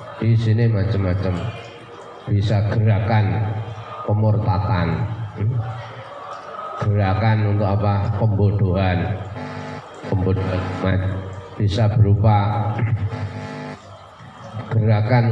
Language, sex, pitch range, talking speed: Indonesian, male, 105-125 Hz, 55 wpm